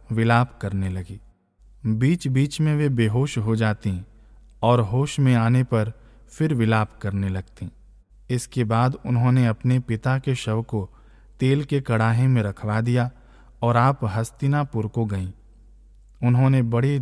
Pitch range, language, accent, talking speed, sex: 110-130 Hz, Hindi, native, 140 wpm, male